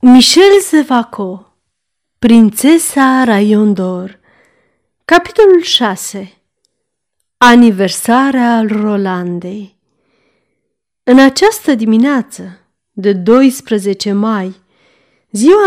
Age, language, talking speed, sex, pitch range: 40-59, Romanian, 60 wpm, female, 195-260 Hz